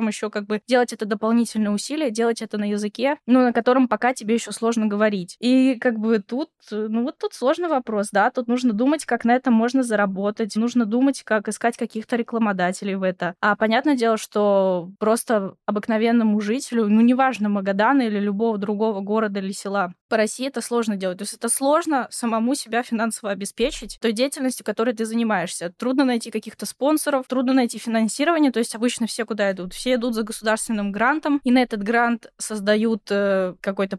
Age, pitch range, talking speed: 10-29, 215-255 Hz, 185 wpm